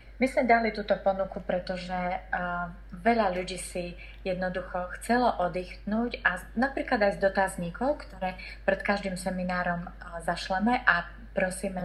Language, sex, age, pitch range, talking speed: Slovak, female, 30-49, 180-210 Hz, 135 wpm